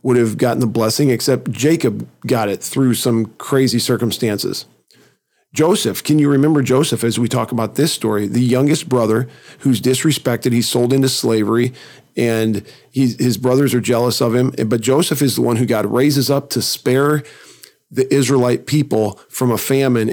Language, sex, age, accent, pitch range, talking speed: English, male, 40-59, American, 115-135 Hz, 170 wpm